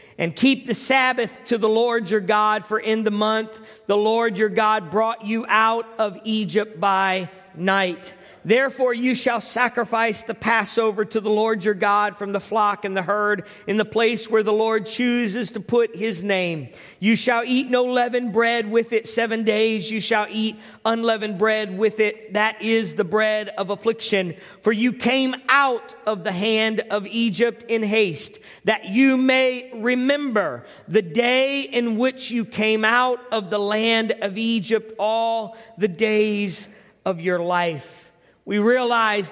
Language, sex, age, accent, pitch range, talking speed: English, male, 40-59, American, 210-240 Hz, 170 wpm